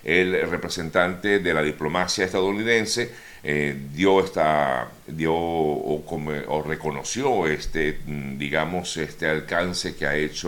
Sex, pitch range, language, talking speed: male, 75-90 Hz, Spanish, 105 wpm